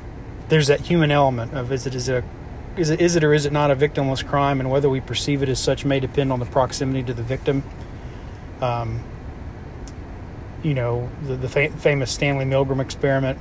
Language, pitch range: English, 120-145 Hz